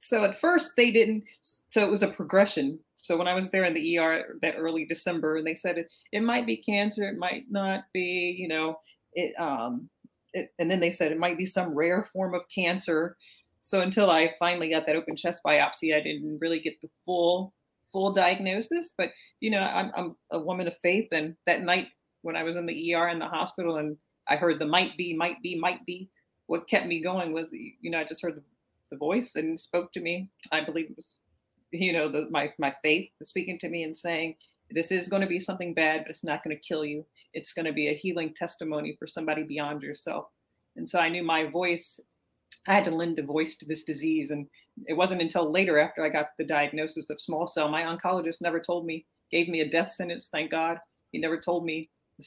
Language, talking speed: English, 230 wpm